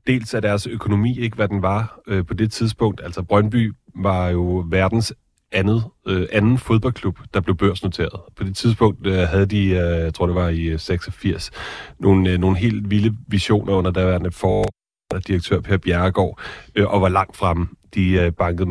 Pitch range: 90-105 Hz